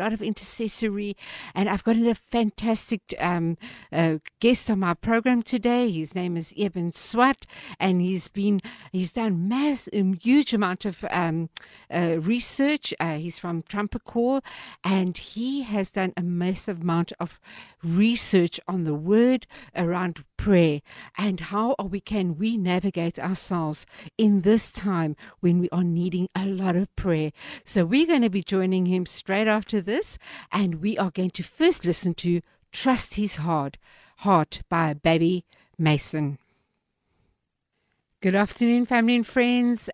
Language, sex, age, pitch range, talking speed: English, female, 60-79, 175-220 Hz, 150 wpm